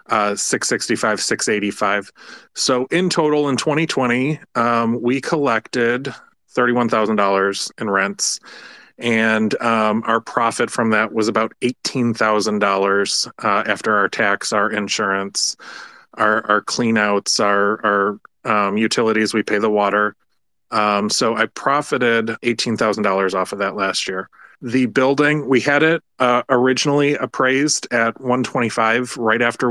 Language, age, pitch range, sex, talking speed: English, 30-49, 105-120 Hz, male, 140 wpm